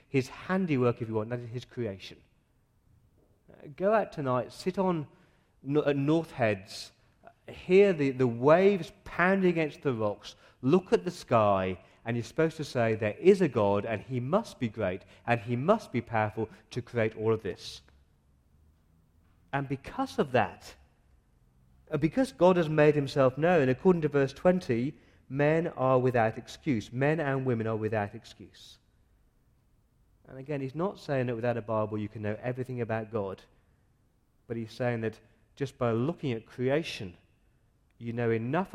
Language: English